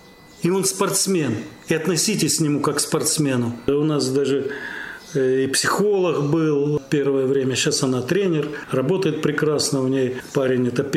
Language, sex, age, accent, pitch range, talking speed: Russian, male, 40-59, native, 135-175 Hz, 140 wpm